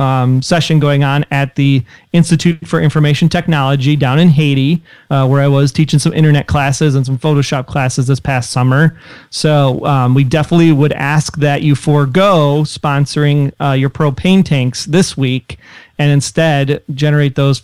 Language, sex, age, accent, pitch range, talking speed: English, male, 30-49, American, 135-155 Hz, 165 wpm